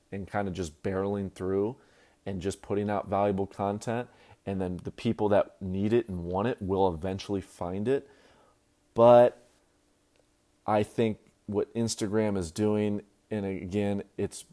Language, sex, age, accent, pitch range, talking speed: English, male, 30-49, American, 95-140 Hz, 150 wpm